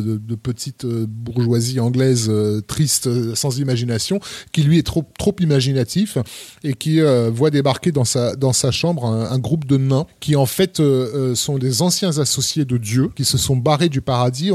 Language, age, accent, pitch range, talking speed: French, 20-39, French, 120-145 Hz, 200 wpm